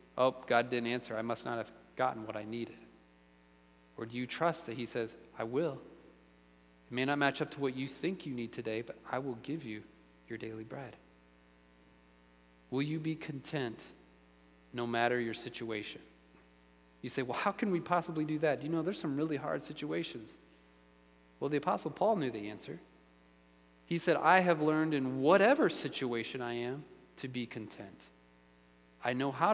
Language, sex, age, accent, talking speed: English, male, 30-49, American, 180 wpm